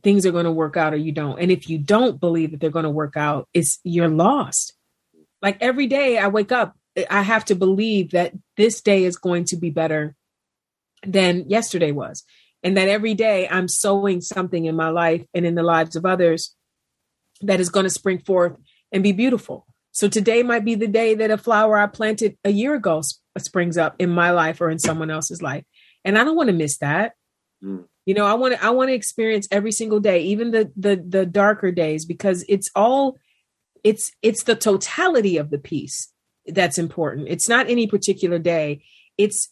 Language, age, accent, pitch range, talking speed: English, 40-59, American, 165-215 Hz, 205 wpm